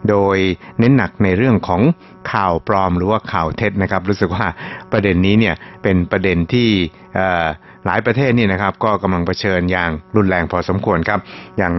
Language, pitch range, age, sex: Thai, 90-105 Hz, 60-79, male